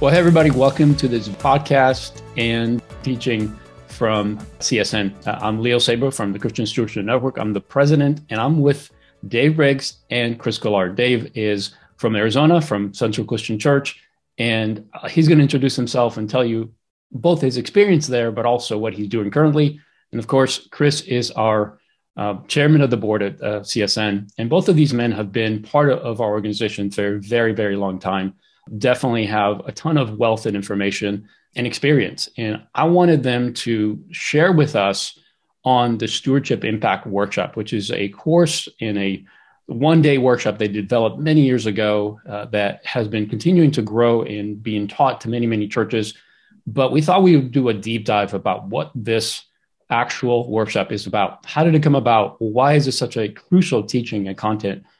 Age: 40-59